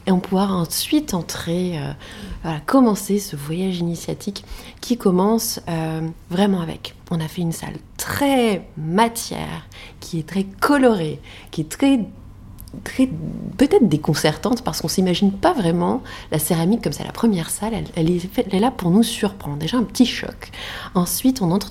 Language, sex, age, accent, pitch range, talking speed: French, female, 30-49, French, 160-200 Hz, 165 wpm